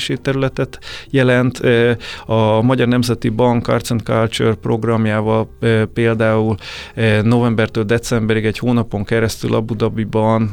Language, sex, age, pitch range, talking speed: Hungarian, male, 30-49, 105-120 Hz, 105 wpm